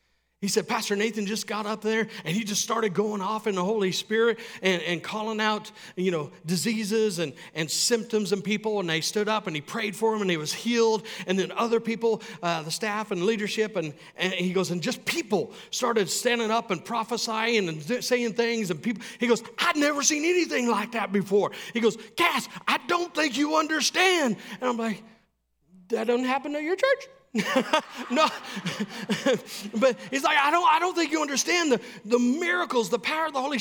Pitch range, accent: 160-235 Hz, American